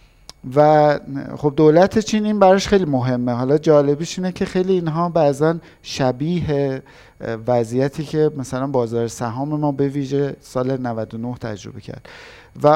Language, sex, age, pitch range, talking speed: Persian, male, 50-69, 125-180 Hz, 135 wpm